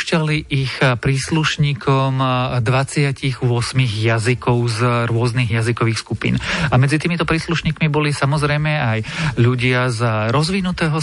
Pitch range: 125-150 Hz